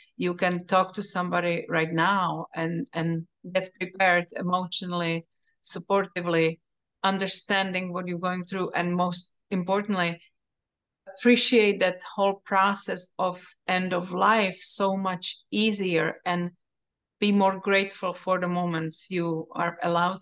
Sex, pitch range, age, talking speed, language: female, 170-200 Hz, 30-49, 125 wpm, English